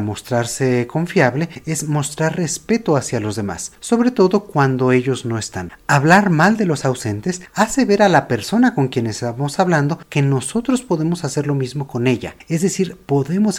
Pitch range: 125-170 Hz